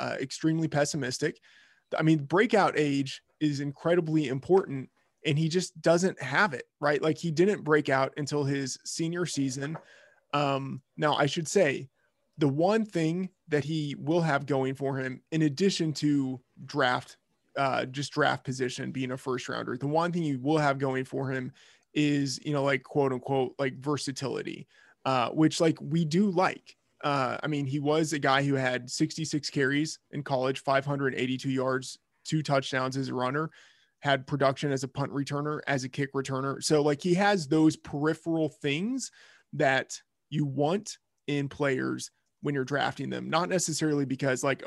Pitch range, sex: 135-165 Hz, male